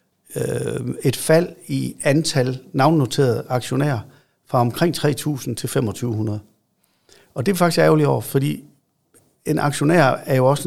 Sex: male